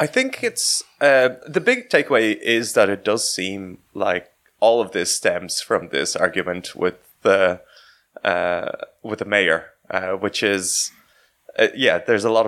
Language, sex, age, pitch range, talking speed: English, male, 20-39, 95-120 Hz, 165 wpm